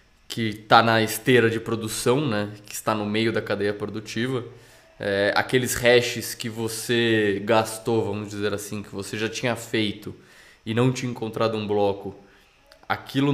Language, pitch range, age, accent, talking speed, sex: Portuguese, 105-130 Hz, 20-39, Brazilian, 155 wpm, male